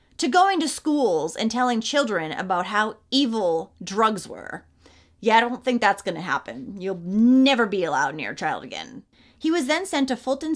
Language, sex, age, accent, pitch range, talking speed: English, female, 30-49, American, 215-290 Hz, 190 wpm